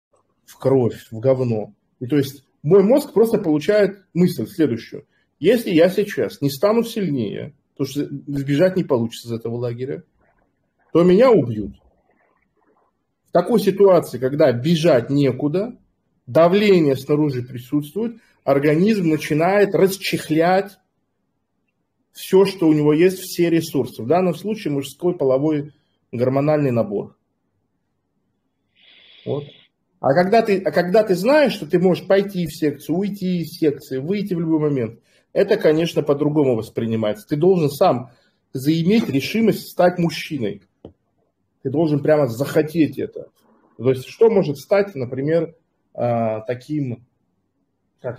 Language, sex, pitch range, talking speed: Russian, male, 135-180 Hz, 125 wpm